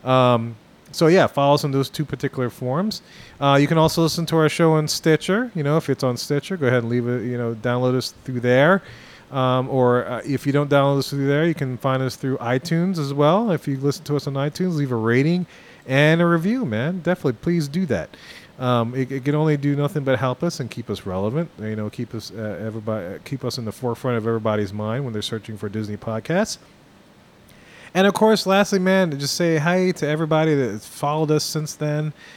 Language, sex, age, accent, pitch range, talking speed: English, male, 30-49, American, 120-150 Hz, 230 wpm